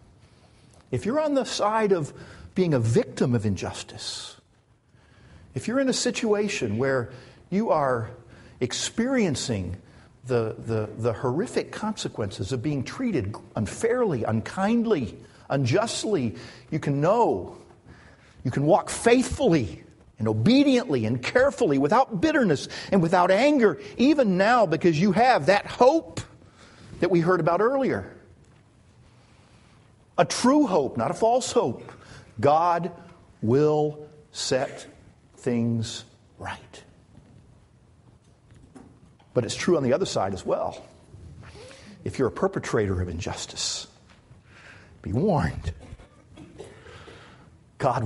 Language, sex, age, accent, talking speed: English, male, 50-69, American, 110 wpm